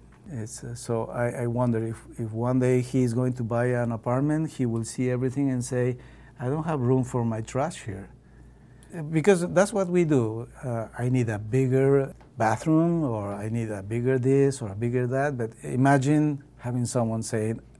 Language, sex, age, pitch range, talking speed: English, male, 60-79, 115-135 Hz, 190 wpm